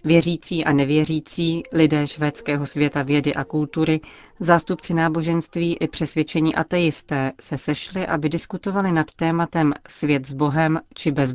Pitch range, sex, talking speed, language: 150-165 Hz, female, 130 wpm, Czech